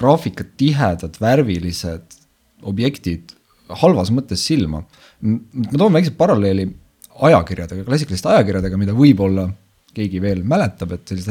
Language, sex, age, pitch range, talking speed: English, male, 30-49, 95-125 Hz, 115 wpm